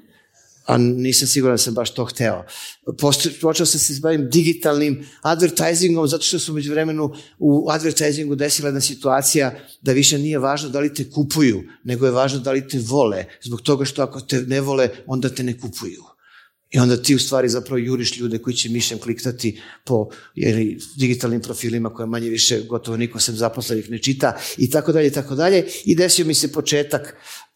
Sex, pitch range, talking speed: male, 115-145 Hz, 185 wpm